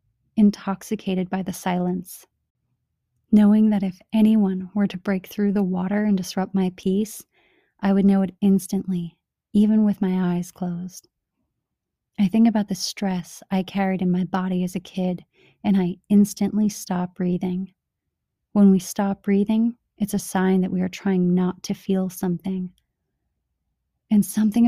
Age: 30-49